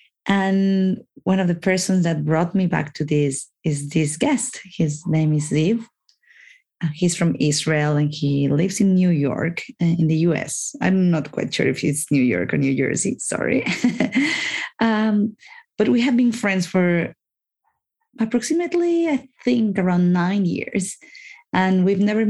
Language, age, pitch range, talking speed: English, 30-49, 155-205 Hz, 155 wpm